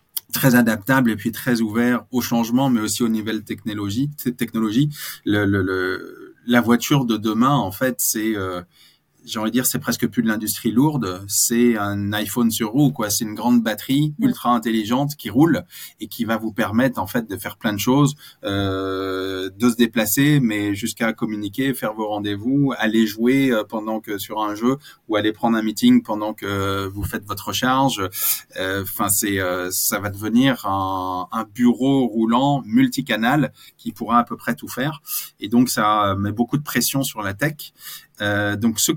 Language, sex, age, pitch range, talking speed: French, male, 20-39, 105-125 Hz, 190 wpm